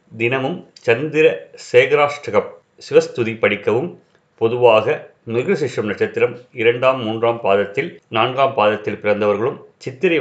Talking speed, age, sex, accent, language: 90 wpm, 30-49, male, native, Tamil